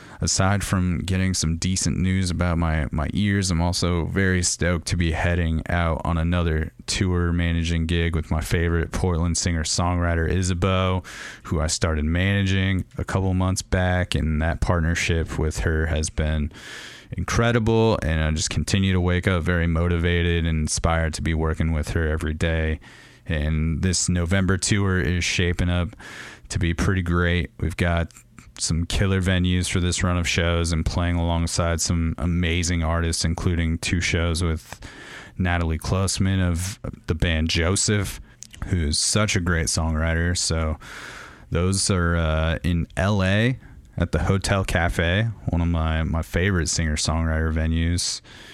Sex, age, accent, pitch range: male, 30-49, American, 80-95 Hz